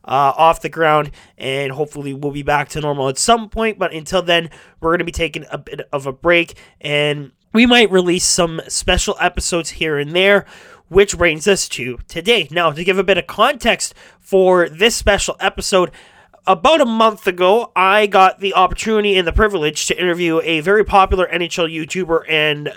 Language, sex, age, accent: English, male, 20-39, American